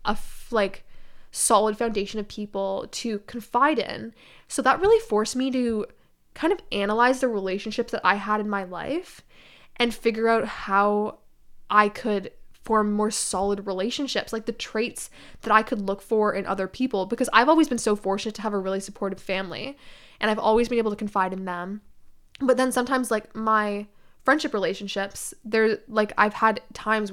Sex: female